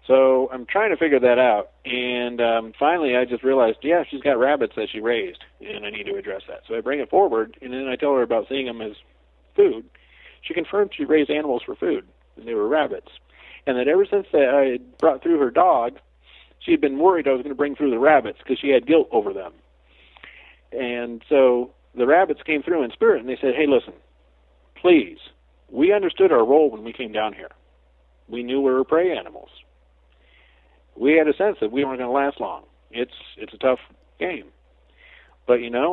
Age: 50-69